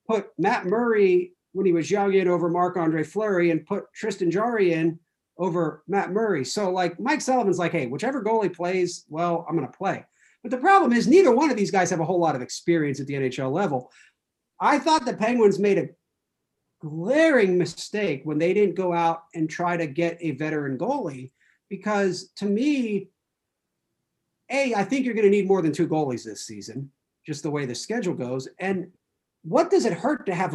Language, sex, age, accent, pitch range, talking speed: English, male, 40-59, American, 160-220 Hz, 200 wpm